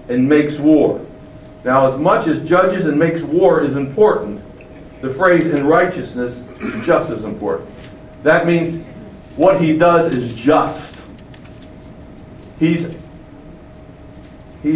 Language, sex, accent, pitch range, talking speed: English, male, American, 145-180 Hz, 120 wpm